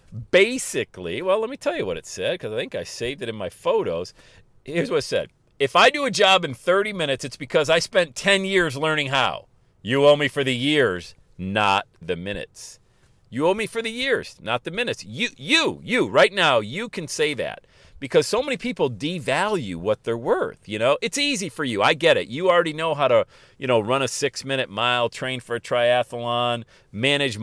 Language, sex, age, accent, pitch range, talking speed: English, male, 50-69, American, 130-210 Hz, 215 wpm